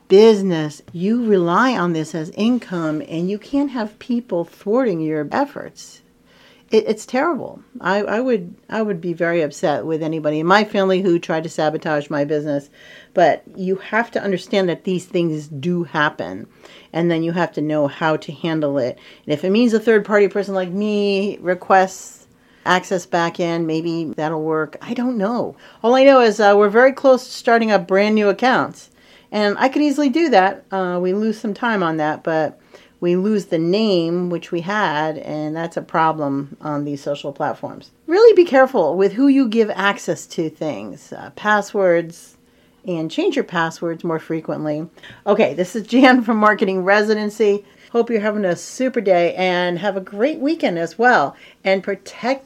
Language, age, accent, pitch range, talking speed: English, 50-69, American, 165-225 Hz, 180 wpm